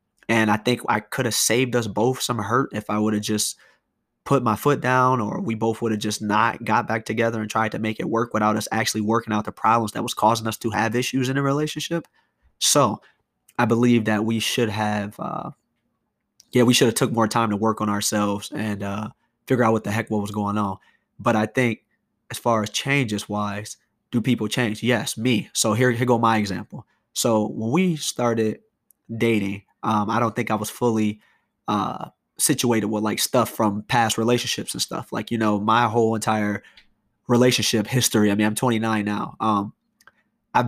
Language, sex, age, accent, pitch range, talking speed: English, male, 20-39, American, 105-120 Hz, 205 wpm